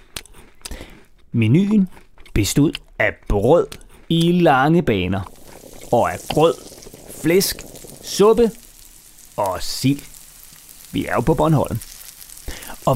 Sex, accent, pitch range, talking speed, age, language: male, native, 110-175 Hz, 95 wpm, 30-49, Danish